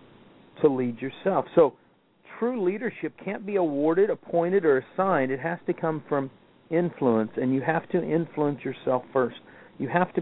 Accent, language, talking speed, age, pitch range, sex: American, English, 165 wpm, 50-69, 150-200 Hz, male